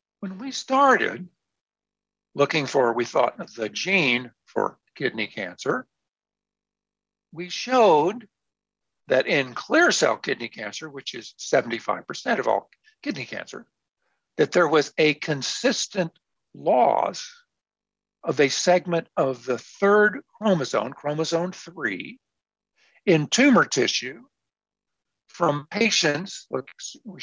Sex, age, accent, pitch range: male, 60-79, American, 135-200 Hz